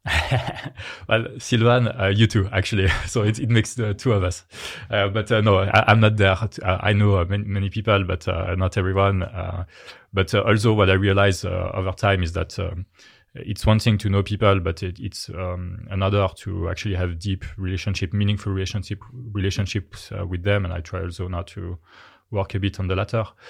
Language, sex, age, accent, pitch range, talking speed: English, male, 30-49, French, 95-110 Hz, 205 wpm